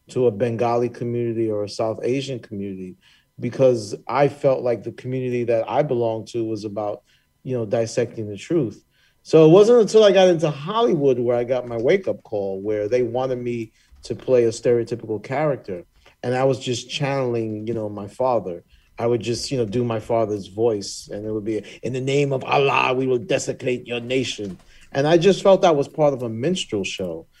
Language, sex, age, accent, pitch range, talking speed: English, male, 40-59, American, 110-130 Hz, 205 wpm